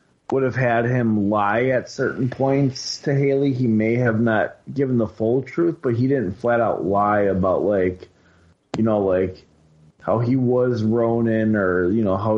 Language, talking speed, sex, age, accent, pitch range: English, 180 wpm, male, 30-49, American, 105-125 Hz